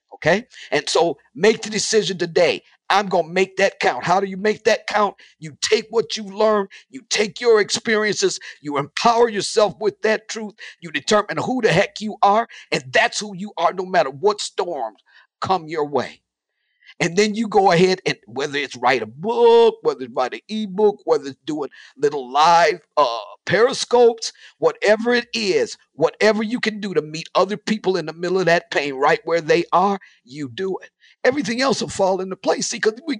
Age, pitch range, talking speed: 50-69, 170-225 Hz, 195 wpm